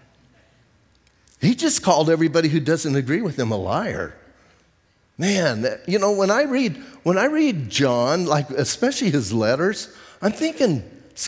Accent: American